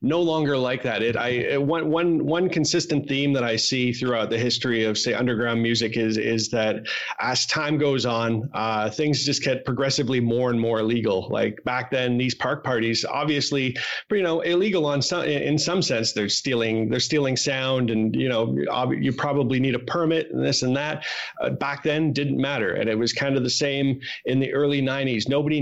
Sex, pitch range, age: male, 120-145 Hz, 30-49